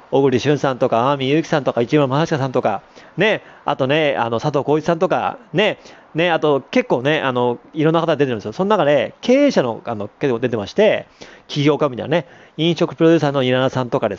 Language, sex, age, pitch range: Japanese, male, 40-59, 130-190 Hz